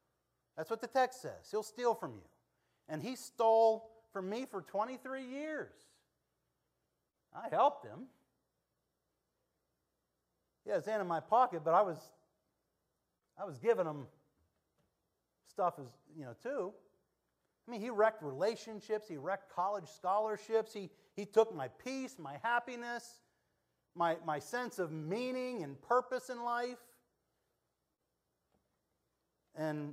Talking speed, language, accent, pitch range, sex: 130 wpm, English, American, 165-240 Hz, male